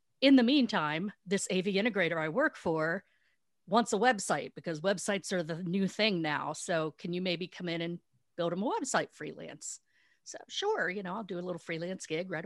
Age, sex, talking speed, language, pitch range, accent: 50-69, female, 200 wpm, English, 175-225 Hz, American